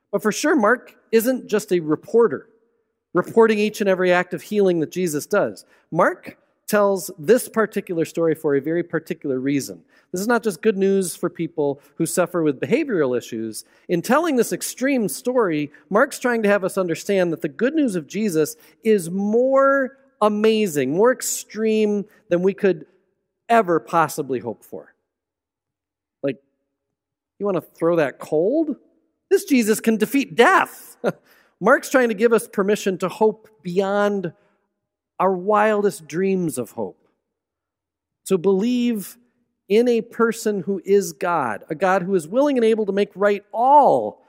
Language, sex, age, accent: English, male, 40-59, American